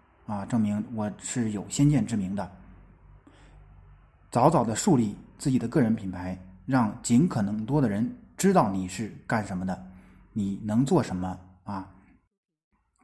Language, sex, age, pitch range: Chinese, male, 20-39, 105-155 Hz